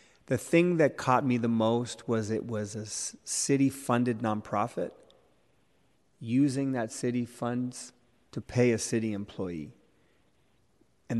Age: 30-49